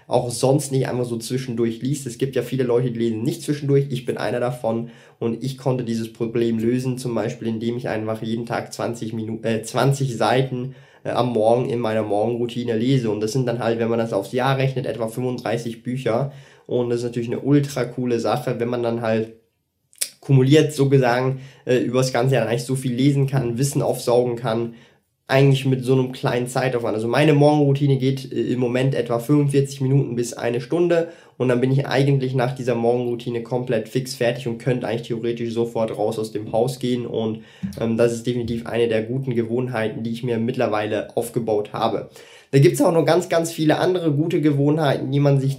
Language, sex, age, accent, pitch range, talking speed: German, male, 20-39, German, 115-135 Hz, 205 wpm